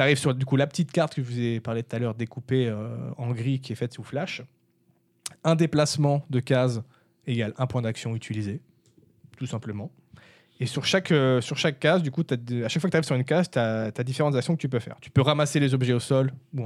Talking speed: 255 wpm